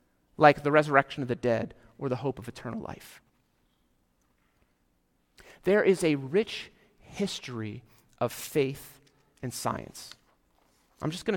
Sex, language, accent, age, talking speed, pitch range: male, English, American, 40-59, 125 wpm, 125-180 Hz